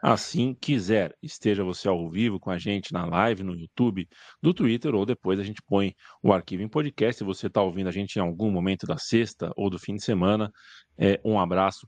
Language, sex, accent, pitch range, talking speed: Portuguese, male, Brazilian, 95-130 Hz, 215 wpm